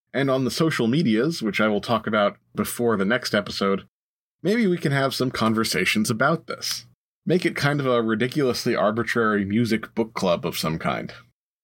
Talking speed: 180 wpm